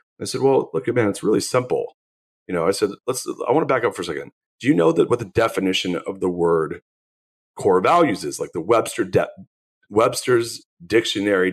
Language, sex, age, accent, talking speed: English, male, 40-59, American, 205 wpm